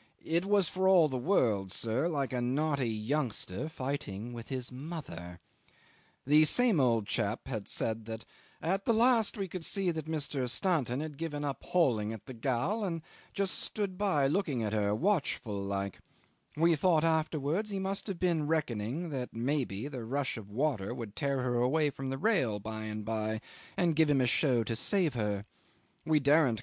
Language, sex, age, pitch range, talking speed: English, male, 40-59, 110-155 Hz, 185 wpm